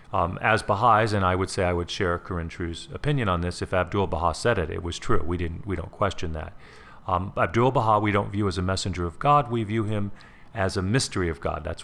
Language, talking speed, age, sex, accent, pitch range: English, 250 wpm, 40-59, male, American, 85-105 Hz